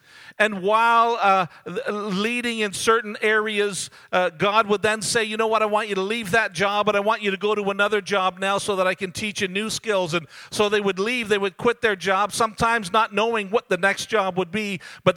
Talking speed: 235 wpm